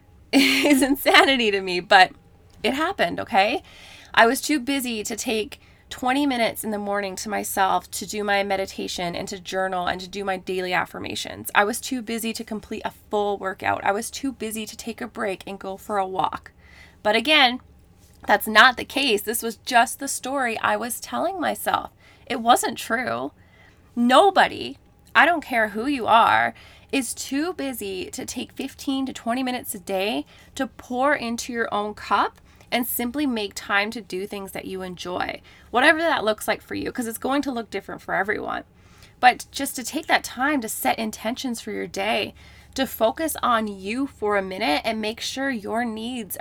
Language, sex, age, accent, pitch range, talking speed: English, female, 20-39, American, 205-265 Hz, 190 wpm